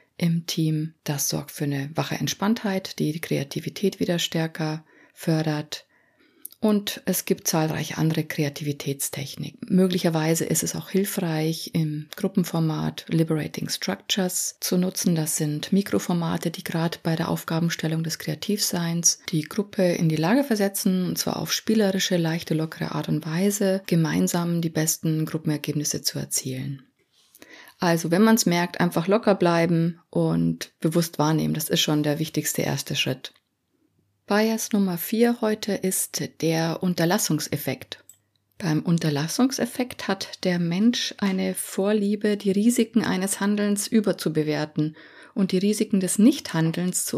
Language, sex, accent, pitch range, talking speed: German, female, German, 155-195 Hz, 135 wpm